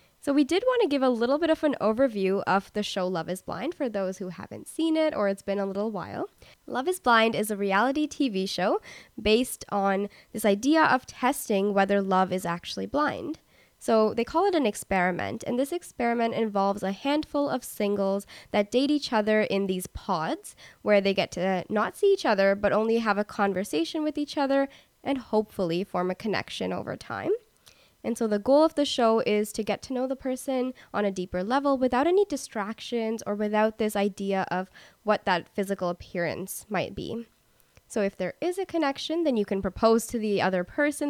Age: 10-29